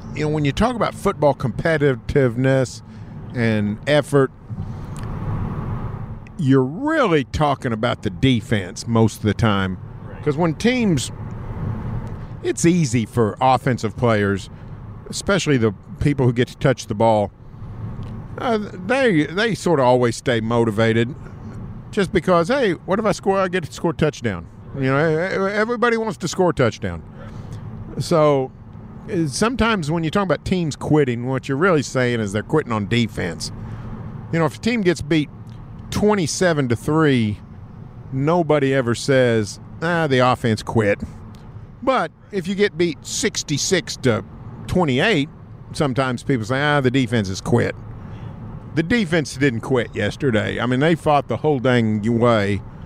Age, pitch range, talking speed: 50-69, 115-155 Hz, 150 wpm